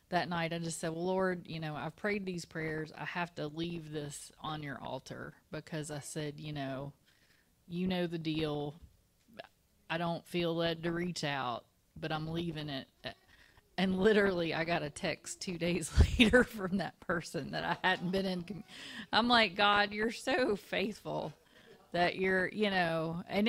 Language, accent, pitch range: English, American, 155-185 Hz